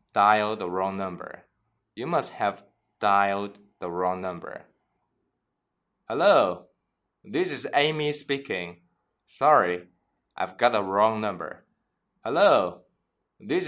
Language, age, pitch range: Chinese, 20-39, 95-125 Hz